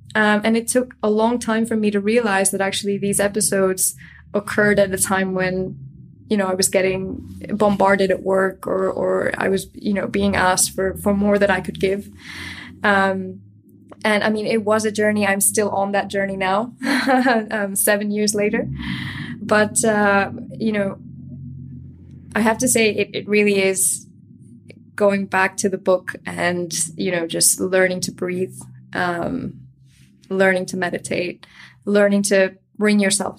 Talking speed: 165 wpm